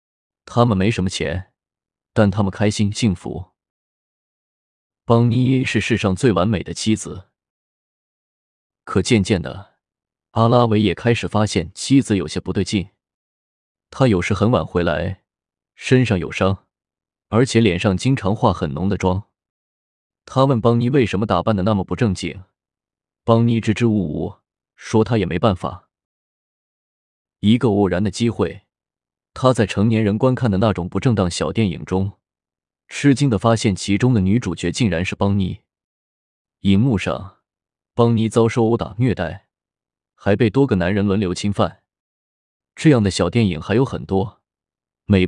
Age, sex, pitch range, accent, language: 20-39, male, 90-115 Hz, native, Chinese